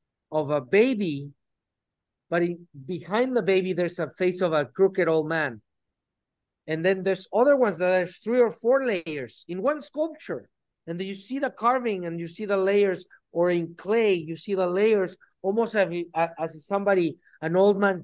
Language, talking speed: English, 185 wpm